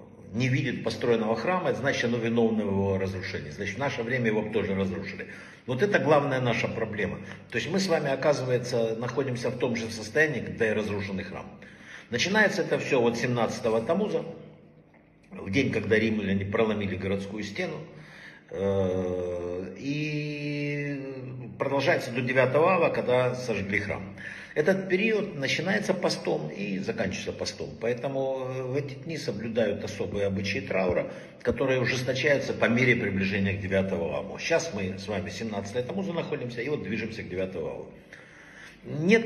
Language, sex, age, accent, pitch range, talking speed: Russian, male, 60-79, native, 105-145 Hz, 145 wpm